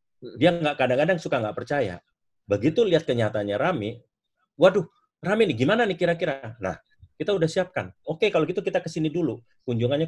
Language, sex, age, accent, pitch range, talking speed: Indonesian, male, 30-49, native, 110-155 Hz, 160 wpm